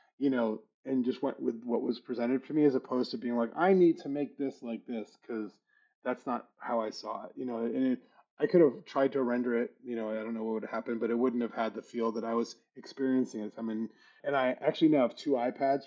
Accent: American